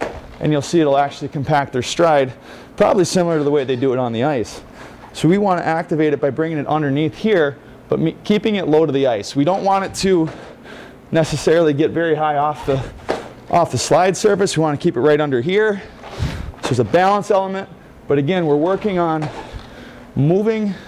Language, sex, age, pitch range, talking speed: English, male, 30-49, 140-180 Hz, 205 wpm